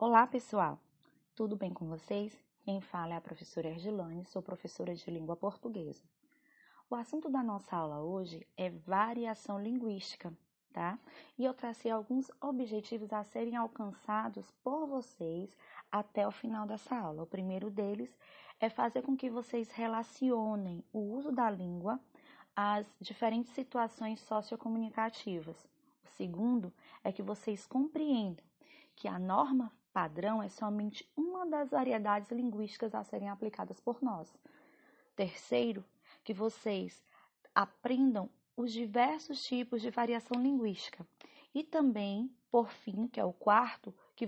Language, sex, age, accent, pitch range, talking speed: English, female, 20-39, Brazilian, 195-250 Hz, 135 wpm